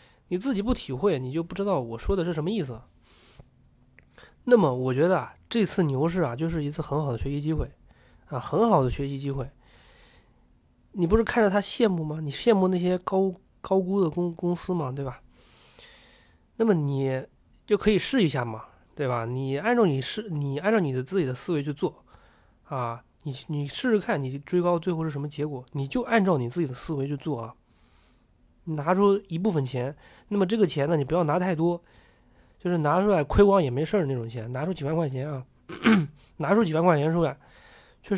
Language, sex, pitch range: Chinese, male, 135-200 Hz